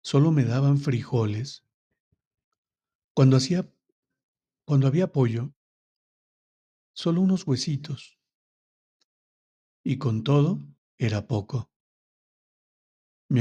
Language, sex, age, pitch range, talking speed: Spanish, male, 50-69, 120-150 Hz, 75 wpm